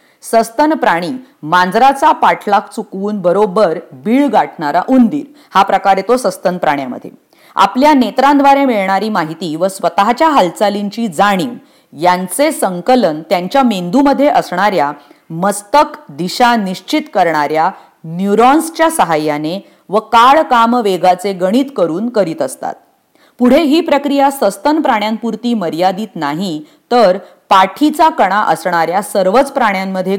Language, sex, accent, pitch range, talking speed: English, female, Indian, 185-275 Hz, 105 wpm